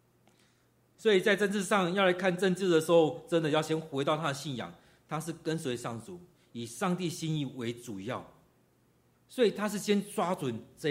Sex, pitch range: male, 125-175 Hz